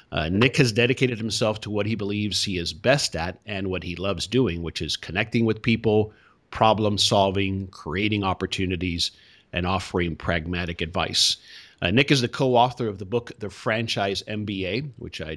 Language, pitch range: English, 85-110 Hz